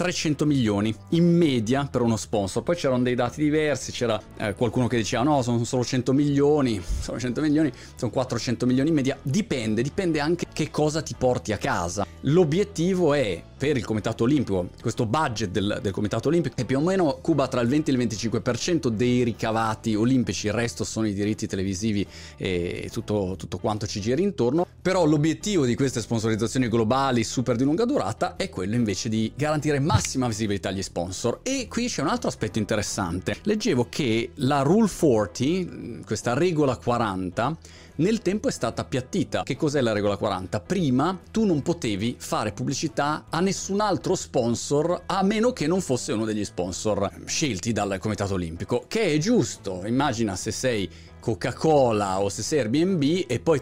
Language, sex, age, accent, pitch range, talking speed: Italian, male, 30-49, native, 110-155 Hz, 175 wpm